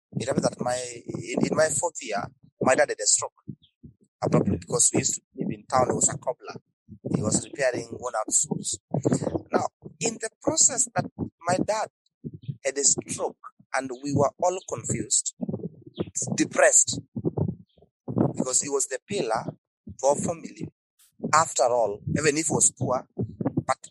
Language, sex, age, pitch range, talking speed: English, male, 30-49, 125-170 Hz, 160 wpm